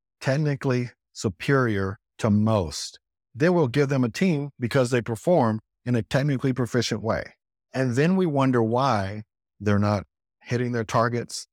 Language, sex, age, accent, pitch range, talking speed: English, male, 50-69, American, 105-130 Hz, 145 wpm